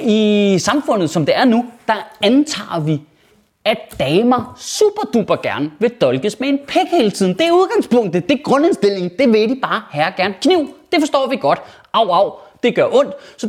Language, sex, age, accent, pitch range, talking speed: Danish, male, 20-39, native, 205-310 Hz, 190 wpm